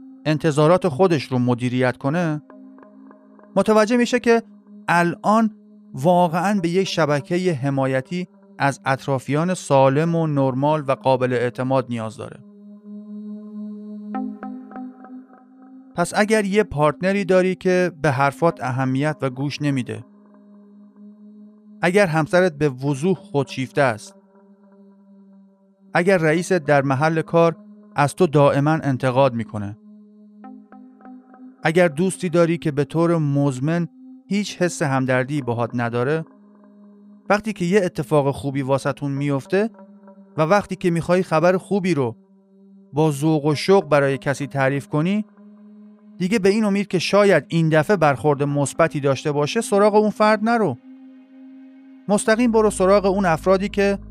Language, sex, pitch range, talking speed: Persian, male, 145-205 Hz, 120 wpm